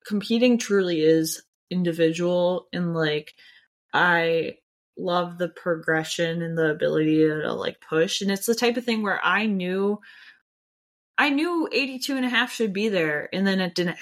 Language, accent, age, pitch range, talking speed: English, American, 20-39, 175-220 Hz, 165 wpm